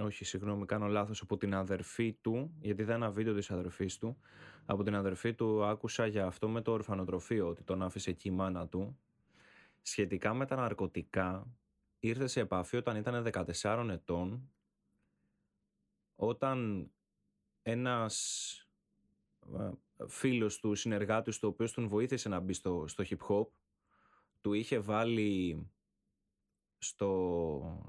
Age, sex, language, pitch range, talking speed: 20-39, male, Greek, 95-115 Hz, 135 wpm